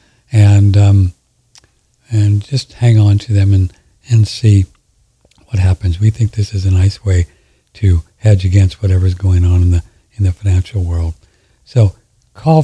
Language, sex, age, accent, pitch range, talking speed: English, male, 60-79, American, 100-125 Hz, 160 wpm